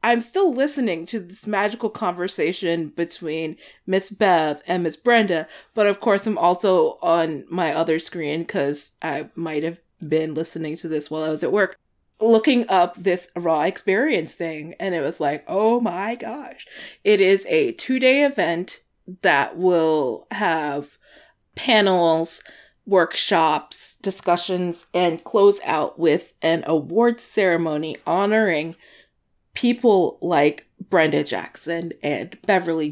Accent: American